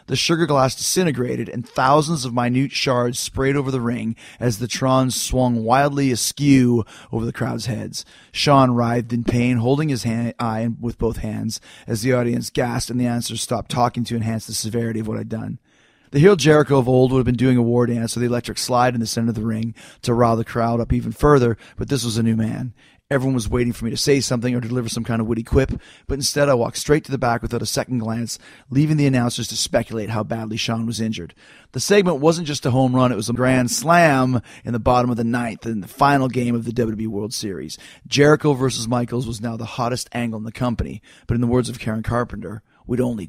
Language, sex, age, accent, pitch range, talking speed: English, male, 30-49, American, 115-130 Hz, 235 wpm